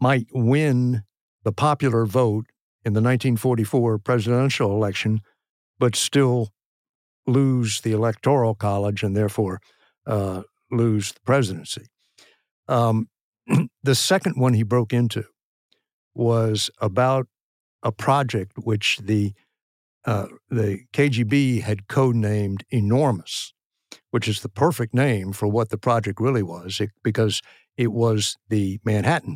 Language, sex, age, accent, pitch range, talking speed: English, male, 60-79, American, 105-125 Hz, 120 wpm